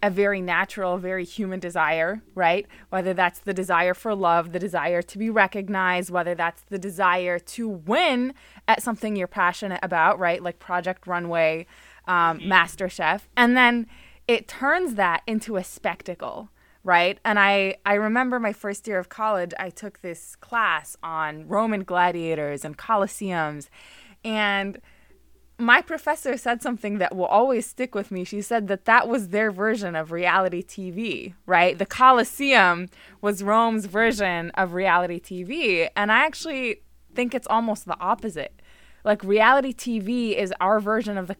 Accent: American